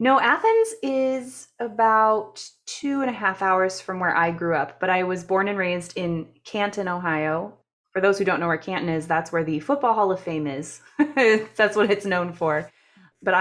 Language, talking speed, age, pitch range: English, 200 wpm, 20-39, 165-205 Hz